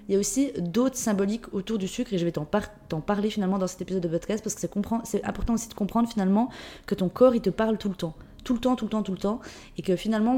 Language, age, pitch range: French, 20-39, 180-225 Hz